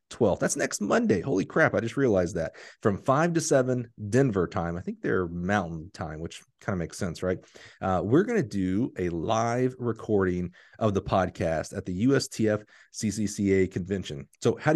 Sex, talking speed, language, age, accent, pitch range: male, 185 wpm, English, 30-49, American, 95-125 Hz